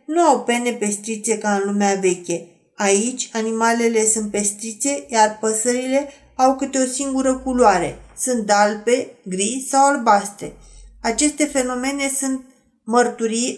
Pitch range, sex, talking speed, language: 215-260 Hz, female, 125 wpm, Romanian